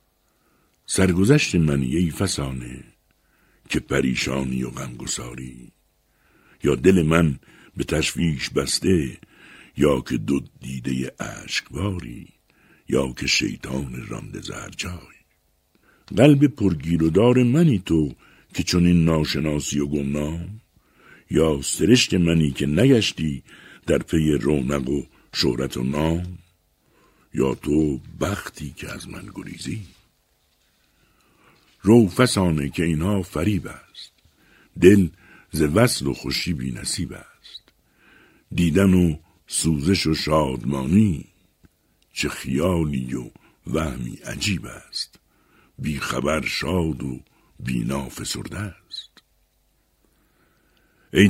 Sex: male